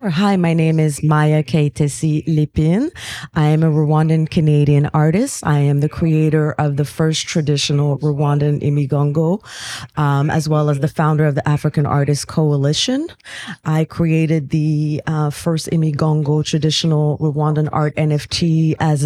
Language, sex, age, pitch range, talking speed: English, female, 30-49, 150-170 Hz, 140 wpm